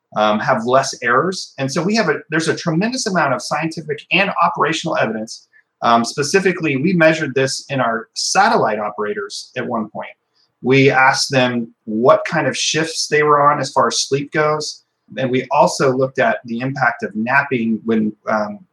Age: 30-49